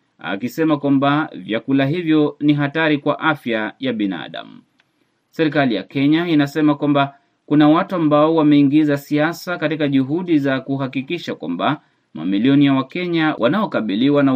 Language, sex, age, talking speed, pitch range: Swahili, male, 30-49, 130 wpm, 135-155 Hz